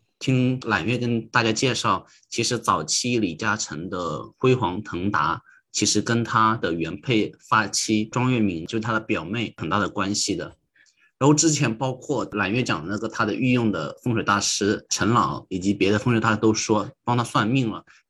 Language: Chinese